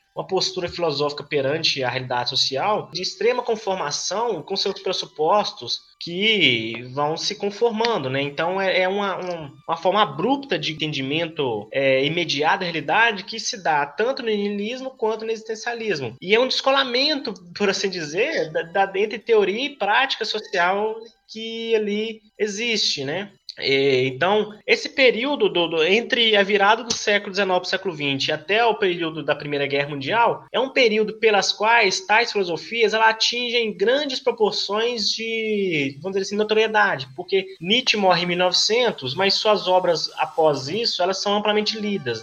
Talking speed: 150 wpm